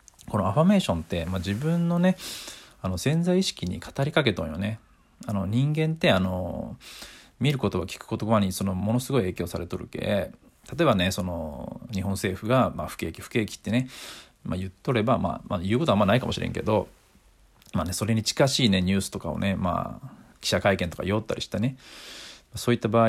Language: Japanese